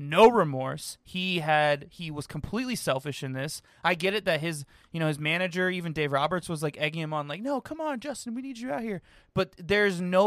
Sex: male